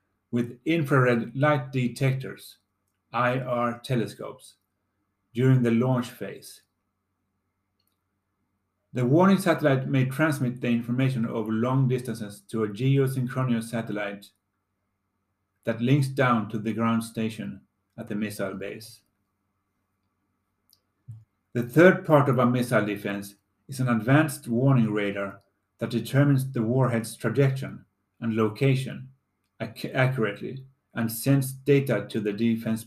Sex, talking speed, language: male, 110 wpm, English